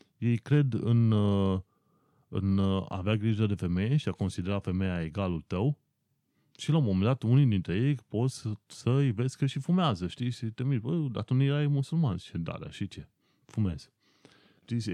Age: 30-49